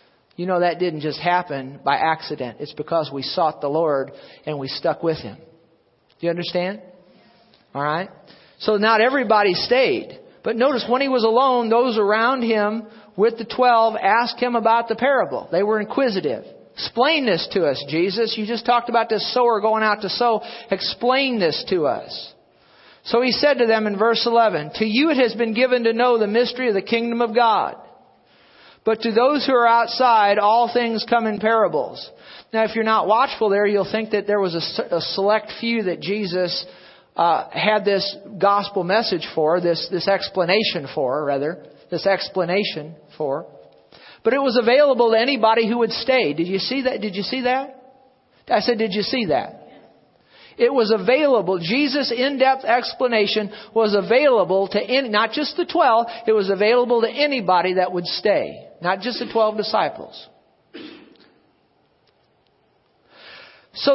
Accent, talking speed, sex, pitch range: American, 170 wpm, male, 195-245 Hz